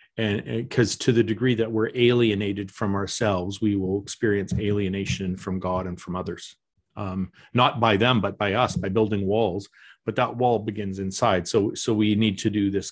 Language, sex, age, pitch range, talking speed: English, male, 40-59, 100-120 Hz, 195 wpm